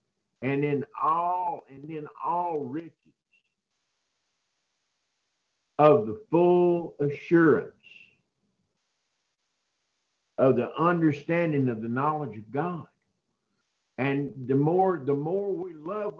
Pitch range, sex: 130-170 Hz, male